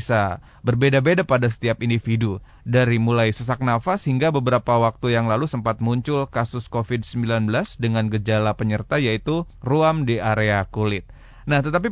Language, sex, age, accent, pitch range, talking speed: Indonesian, male, 20-39, native, 110-140 Hz, 135 wpm